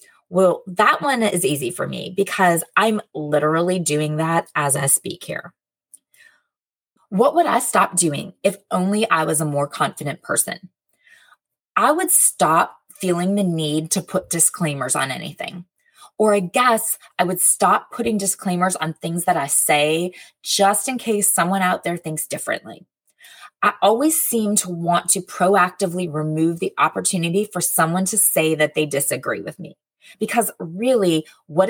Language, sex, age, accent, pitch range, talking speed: English, female, 20-39, American, 165-220 Hz, 155 wpm